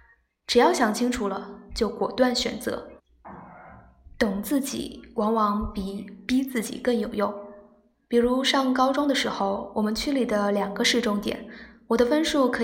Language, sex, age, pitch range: Chinese, female, 10-29, 210-255 Hz